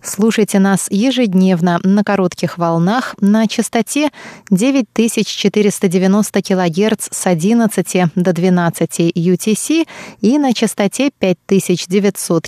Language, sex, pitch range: Russian, female, 175-215 Hz